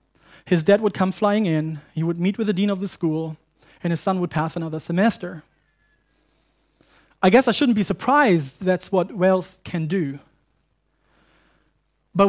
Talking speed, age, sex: 165 wpm, 30-49, male